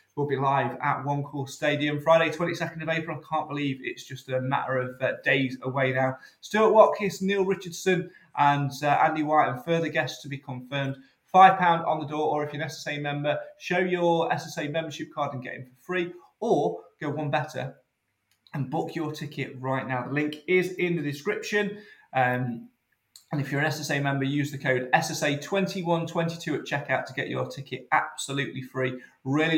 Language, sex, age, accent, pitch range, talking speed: English, male, 20-39, British, 130-160 Hz, 185 wpm